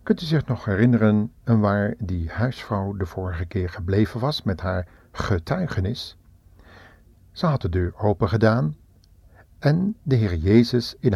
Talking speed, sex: 145 wpm, male